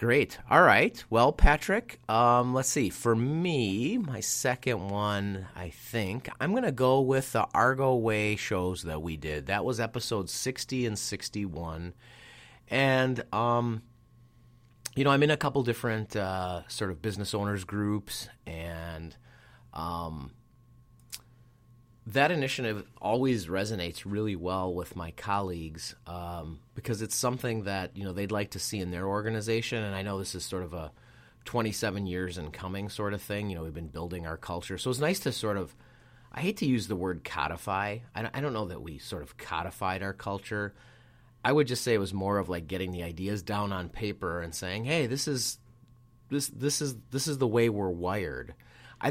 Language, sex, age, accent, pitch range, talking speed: English, male, 30-49, American, 95-120 Hz, 180 wpm